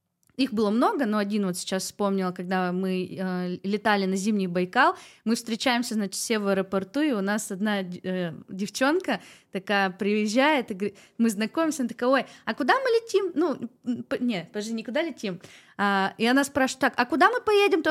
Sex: female